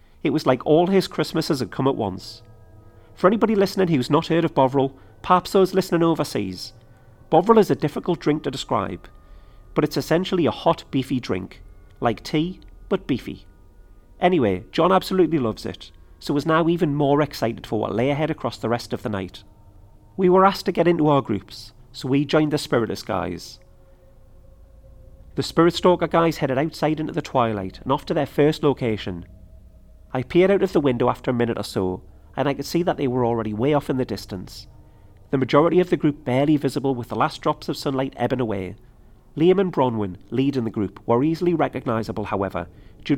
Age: 40-59